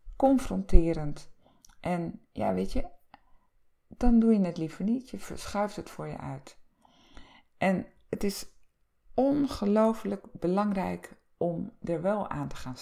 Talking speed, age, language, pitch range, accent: 130 wpm, 50-69, Dutch, 170-215 Hz, Dutch